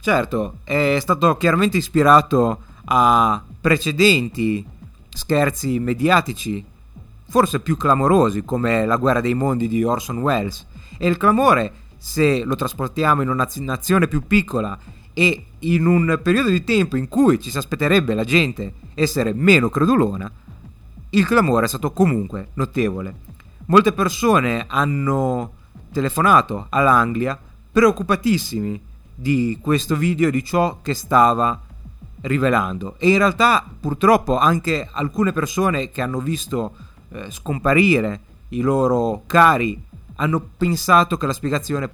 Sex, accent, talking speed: male, native, 125 wpm